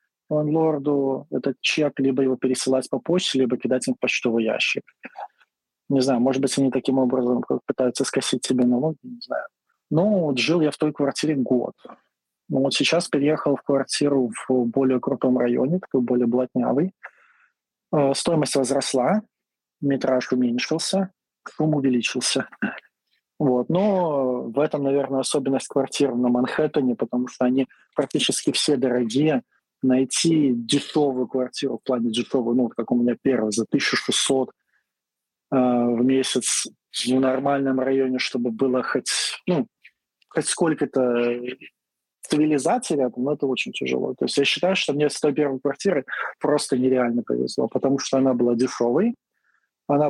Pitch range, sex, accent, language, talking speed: 125-145 Hz, male, native, Russian, 140 wpm